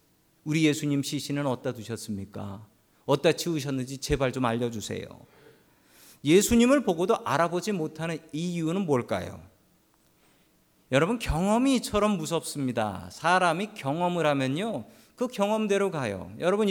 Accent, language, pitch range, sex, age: native, Korean, 130-200 Hz, male, 40-59